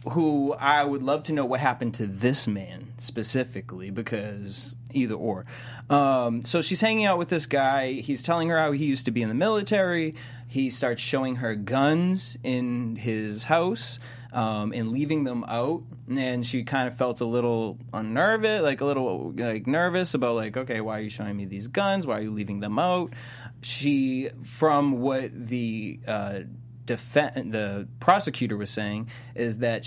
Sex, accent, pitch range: male, American, 115-140 Hz